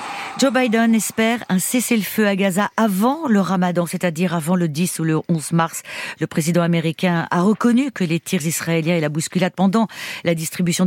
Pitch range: 160-210 Hz